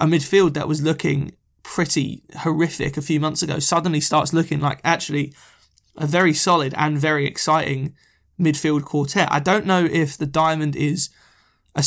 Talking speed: 160 wpm